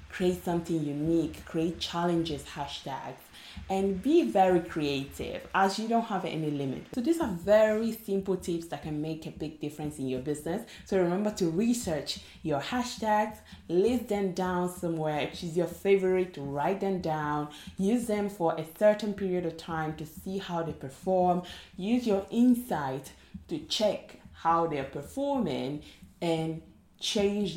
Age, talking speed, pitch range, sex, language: 20-39, 155 wpm, 145-200 Hz, female, English